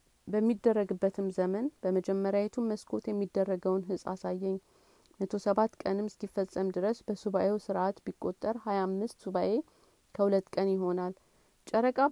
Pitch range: 190-215 Hz